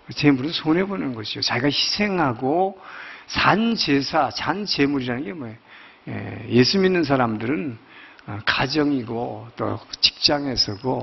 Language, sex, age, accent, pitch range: Korean, male, 50-69, native, 140-210 Hz